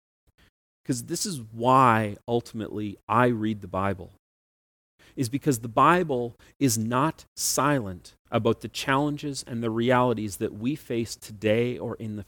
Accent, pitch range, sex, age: American, 110-135 Hz, male, 40-59